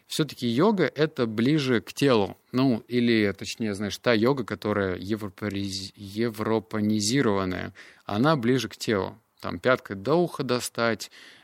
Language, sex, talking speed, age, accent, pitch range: Russian, male, 120 wpm, 20-39, native, 100-120 Hz